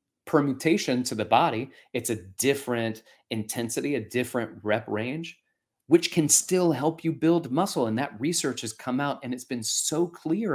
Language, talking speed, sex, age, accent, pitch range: English, 170 wpm, male, 30-49, American, 105-160 Hz